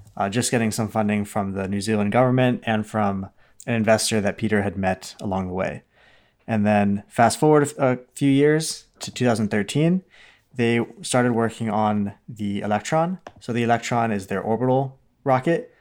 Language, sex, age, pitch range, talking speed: English, male, 20-39, 105-125 Hz, 165 wpm